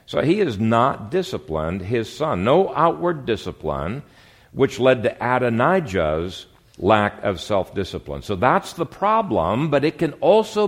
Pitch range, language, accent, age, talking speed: 95-135 Hz, English, American, 60-79, 140 wpm